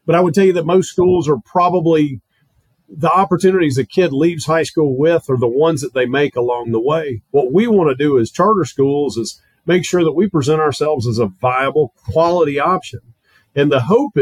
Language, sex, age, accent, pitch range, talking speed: English, male, 40-59, American, 125-170 Hz, 210 wpm